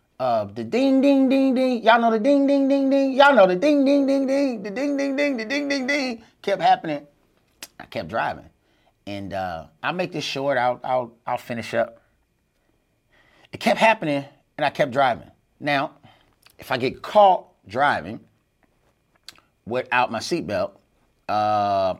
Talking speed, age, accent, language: 160 wpm, 30-49, American, English